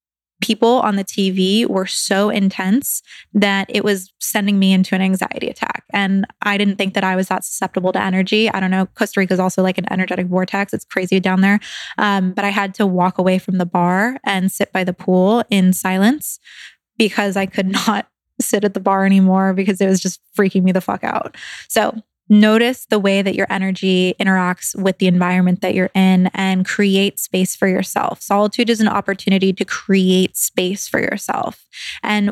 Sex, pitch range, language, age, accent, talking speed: female, 190-210 Hz, English, 20-39, American, 195 wpm